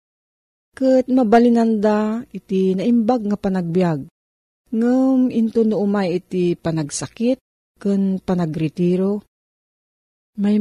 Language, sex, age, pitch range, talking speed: Filipino, female, 40-59, 165-220 Hz, 80 wpm